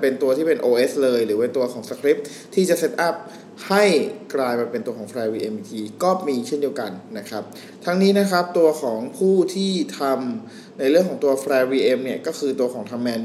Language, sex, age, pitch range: Thai, male, 20-39, 125-180 Hz